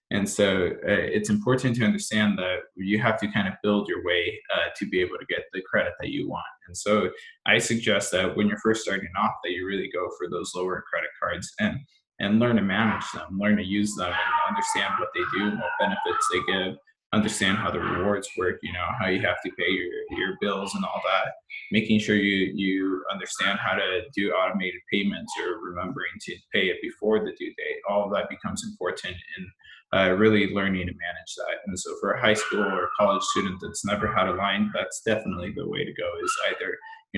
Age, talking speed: 20-39, 225 wpm